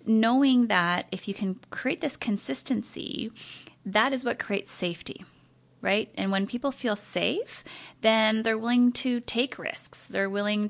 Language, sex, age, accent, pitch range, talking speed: English, female, 20-39, American, 200-255 Hz, 150 wpm